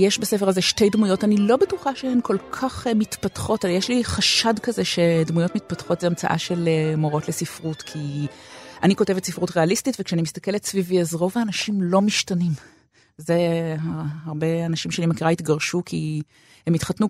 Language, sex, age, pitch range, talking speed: Hebrew, female, 30-49, 155-205 Hz, 160 wpm